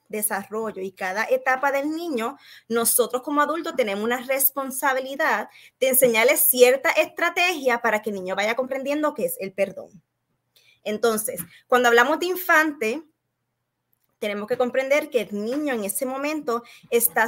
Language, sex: English, female